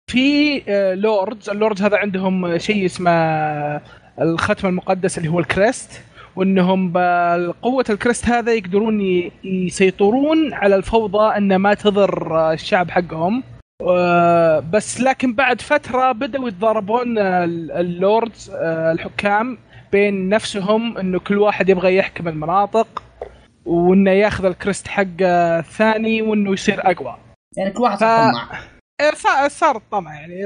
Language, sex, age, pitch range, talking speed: Arabic, male, 20-39, 175-225 Hz, 110 wpm